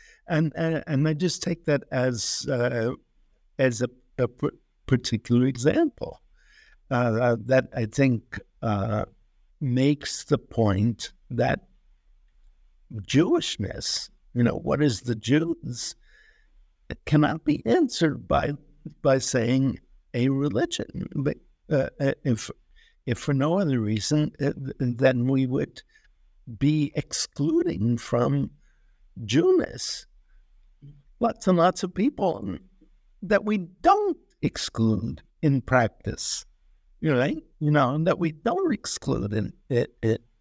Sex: male